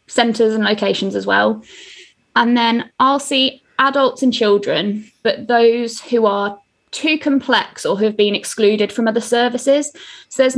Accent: British